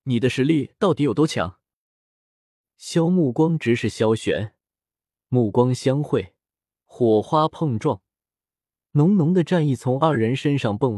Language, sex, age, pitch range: Chinese, male, 20-39, 105-165 Hz